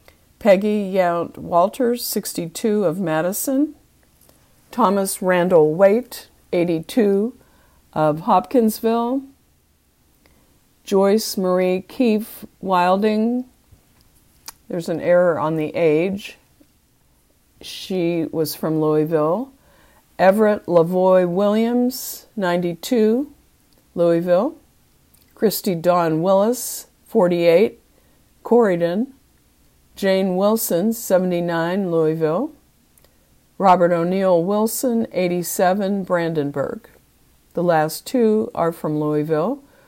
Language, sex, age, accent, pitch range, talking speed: English, female, 50-69, American, 165-215 Hz, 75 wpm